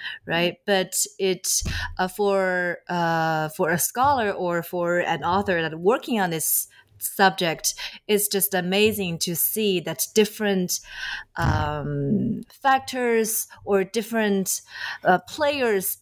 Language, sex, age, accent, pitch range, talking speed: English, female, 30-49, Chinese, 170-225 Hz, 115 wpm